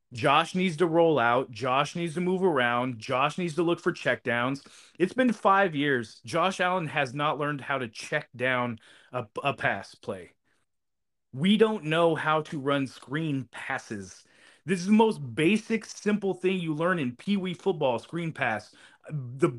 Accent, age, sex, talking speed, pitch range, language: American, 30-49, male, 170 wpm, 125-175 Hz, English